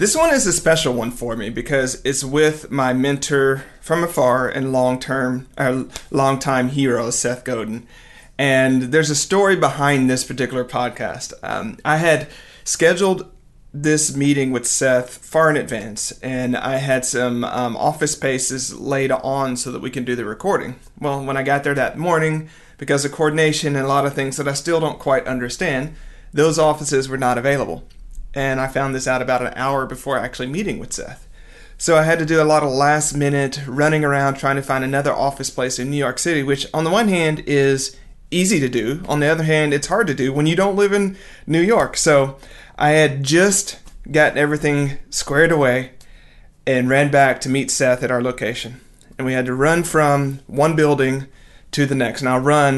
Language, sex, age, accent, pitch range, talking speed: English, male, 40-59, American, 130-155 Hz, 195 wpm